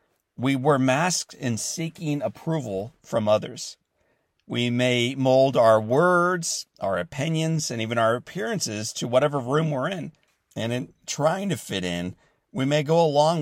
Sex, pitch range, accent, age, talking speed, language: male, 125-165 Hz, American, 50-69, 150 wpm, English